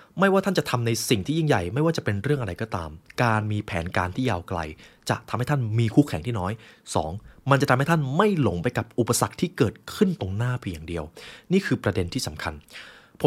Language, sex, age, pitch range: Thai, male, 20-39, 95-130 Hz